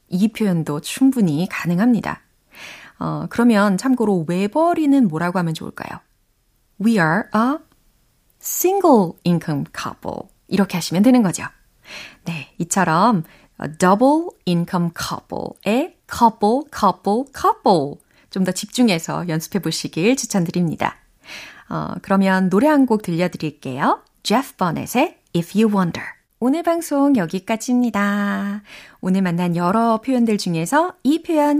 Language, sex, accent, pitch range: Korean, female, native, 175-255 Hz